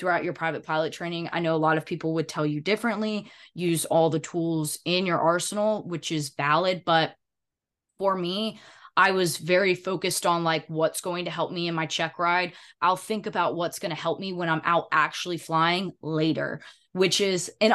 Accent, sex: American, female